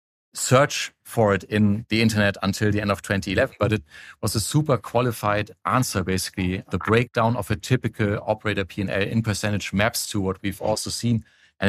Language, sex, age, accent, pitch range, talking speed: English, male, 40-59, German, 105-130 Hz, 180 wpm